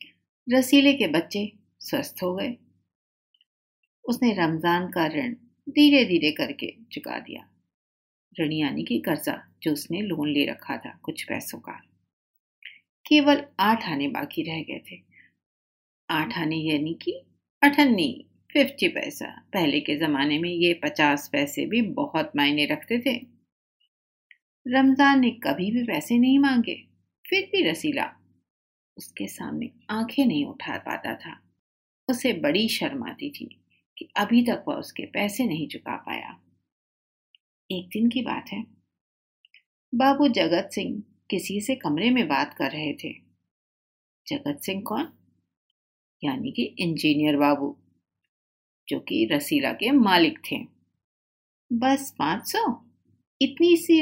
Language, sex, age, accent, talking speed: Hindi, female, 50-69, native, 130 wpm